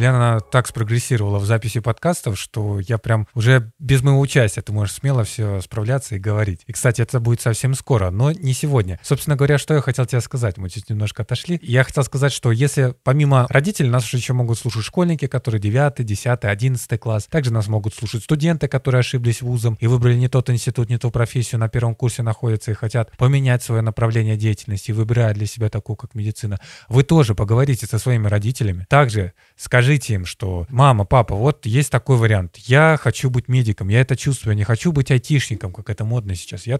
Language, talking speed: Russian, 195 wpm